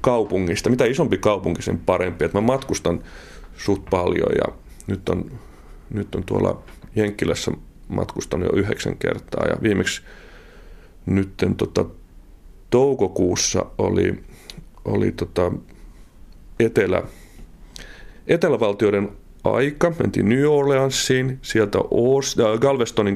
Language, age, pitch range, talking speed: Finnish, 30-49, 95-115 Hz, 100 wpm